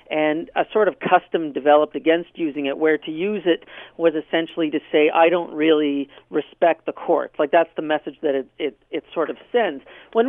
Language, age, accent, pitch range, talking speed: English, 50-69, American, 150-185 Hz, 205 wpm